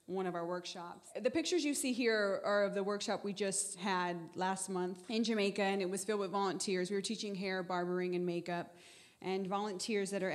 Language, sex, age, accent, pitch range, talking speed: English, female, 20-39, American, 180-205 Hz, 215 wpm